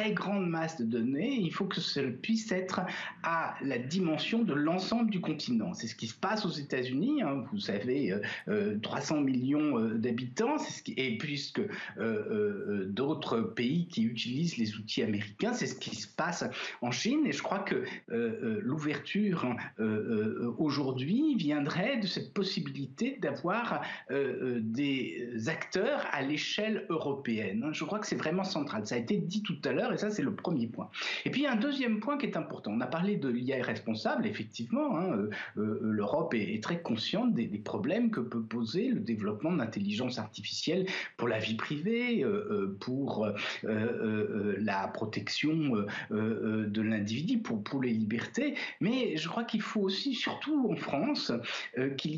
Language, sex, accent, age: French, male, French, 60-79